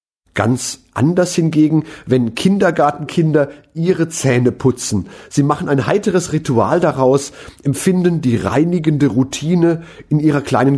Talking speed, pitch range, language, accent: 115 wpm, 120-155 Hz, German, German